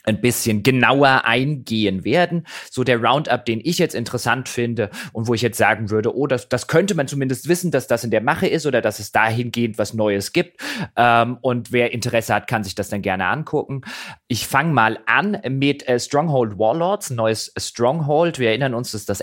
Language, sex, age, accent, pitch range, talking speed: German, male, 30-49, German, 105-130 Hz, 200 wpm